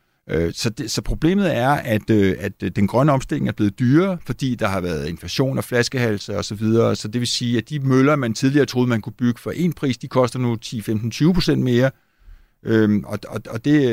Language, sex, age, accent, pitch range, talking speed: Danish, male, 60-79, native, 110-145 Hz, 170 wpm